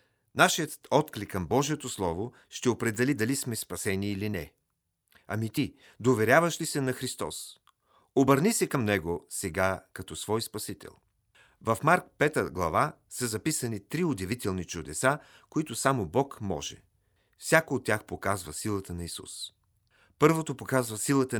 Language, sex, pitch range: Bulgarian, male, 100-135 Hz